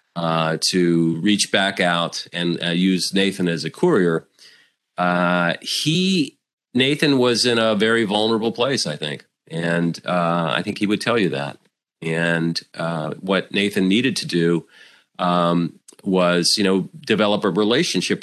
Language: English